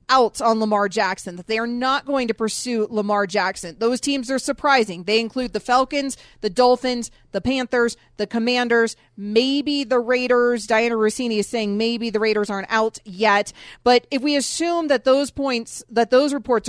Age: 30-49